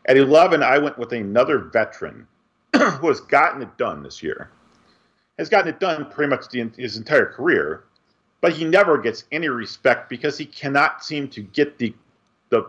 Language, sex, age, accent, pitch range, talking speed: English, male, 40-59, American, 135-185 Hz, 180 wpm